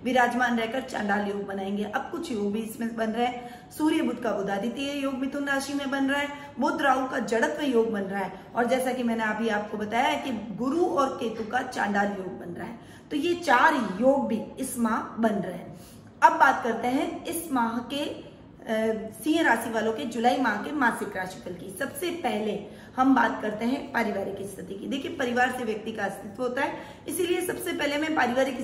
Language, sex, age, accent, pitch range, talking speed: Hindi, female, 20-39, native, 225-280 Hz, 195 wpm